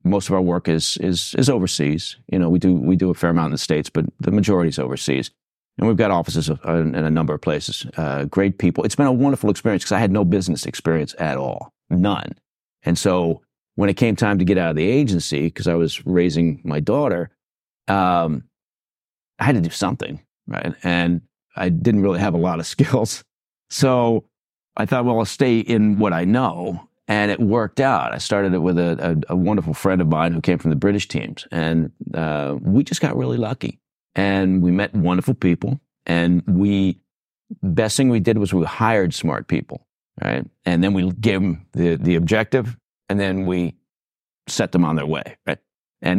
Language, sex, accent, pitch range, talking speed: English, male, American, 85-105 Hz, 205 wpm